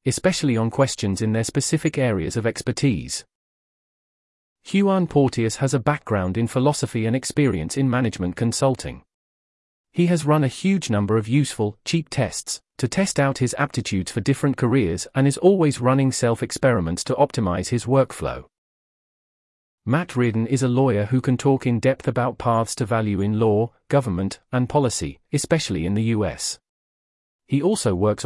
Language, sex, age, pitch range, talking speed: English, male, 40-59, 110-140 Hz, 155 wpm